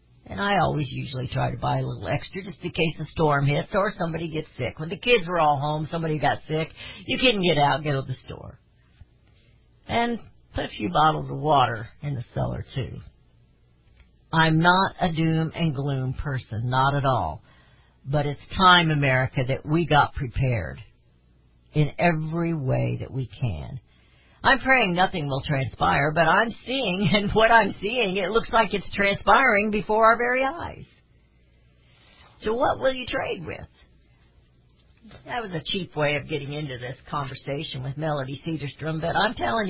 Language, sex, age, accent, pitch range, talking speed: English, female, 50-69, American, 130-180 Hz, 175 wpm